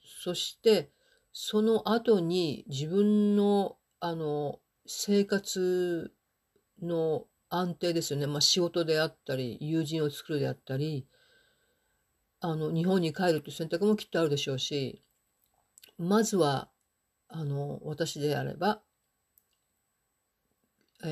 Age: 50-69